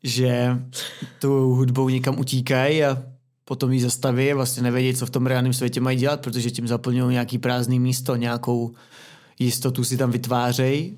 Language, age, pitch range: Czech, 20-39, 120-130 Hz